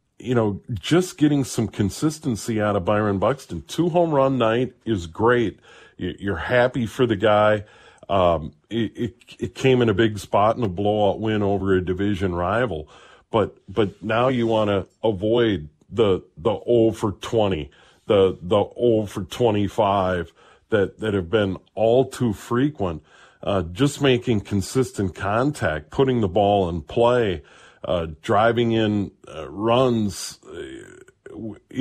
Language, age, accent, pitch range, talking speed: English, 40-59, American, 100-125 Hz, 145 wpm